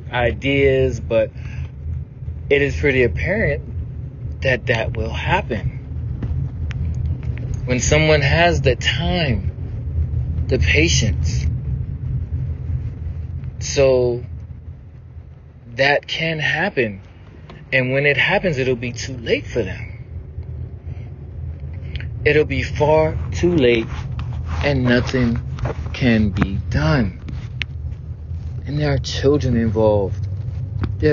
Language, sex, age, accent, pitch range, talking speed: English, male, 30-49, American, 95-130 Hz, 90 wpm